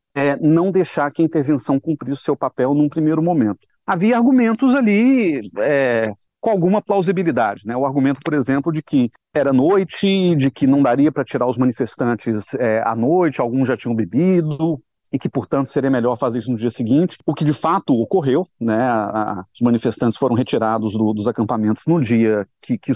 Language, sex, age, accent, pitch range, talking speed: Portuguese, male, 40-59, Brazilian, 120-170 Hz, 180 wpm